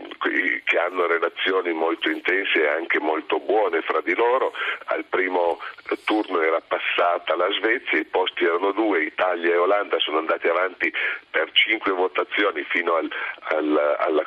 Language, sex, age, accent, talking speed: Italian, male, 40-59, native, 150 wpm